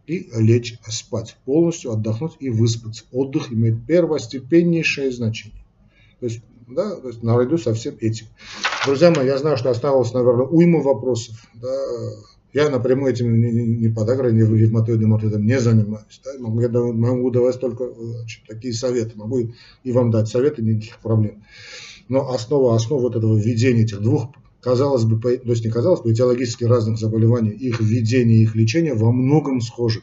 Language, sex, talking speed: Russian, male, 150 wpm